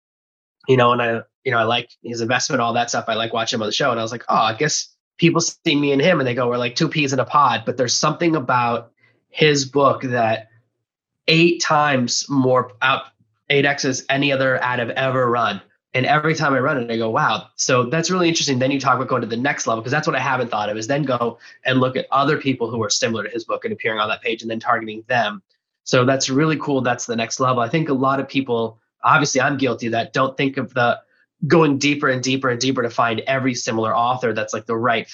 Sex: male